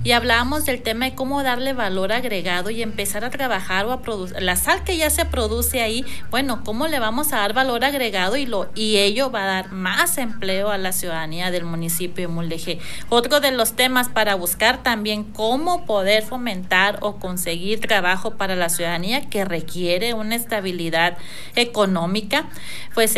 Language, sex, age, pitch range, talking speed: Spanish, female, 40-59, 185-240 Hz, 180 wpm